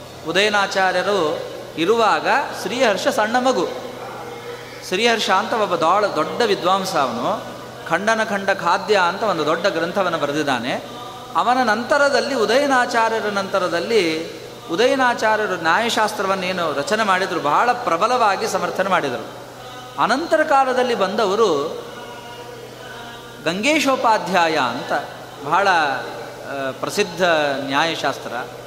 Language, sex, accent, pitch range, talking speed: Kannada, male, native, 180-250 Hz, 85 wpm